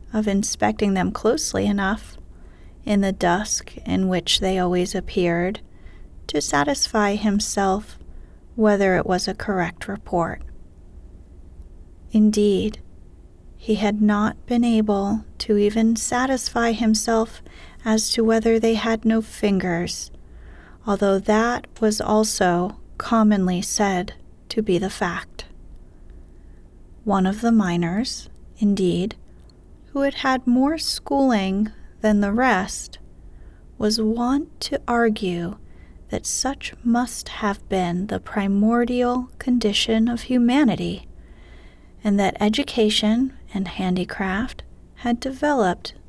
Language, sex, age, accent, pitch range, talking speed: English, female, 30-49, American, 180-230 Hz, 110 wpm